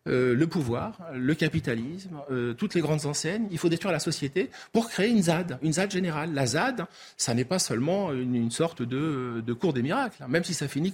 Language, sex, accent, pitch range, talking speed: French, male, French, 125-185 Hz, 225 wpm